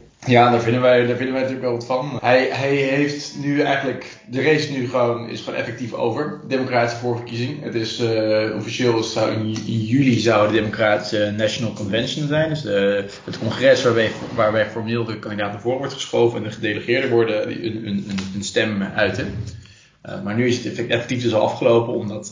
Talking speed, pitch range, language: 190 wpm, 110-125 Hz, Dutch